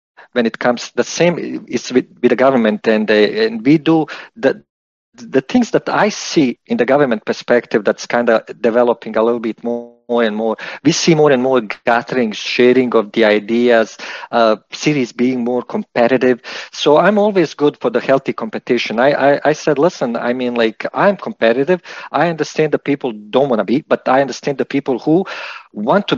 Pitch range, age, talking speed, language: 115-155 Hz, 50-69, 195 wpm, English